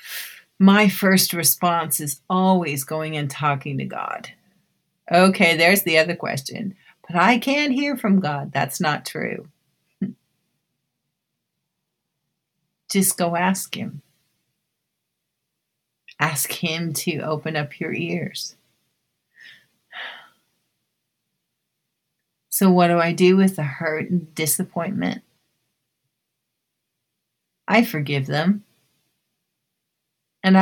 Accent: American